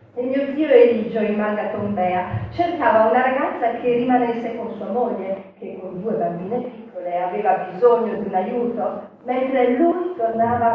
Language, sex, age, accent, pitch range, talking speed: Italian, female, 40-59, native, 195-250 Hz, 155 wpm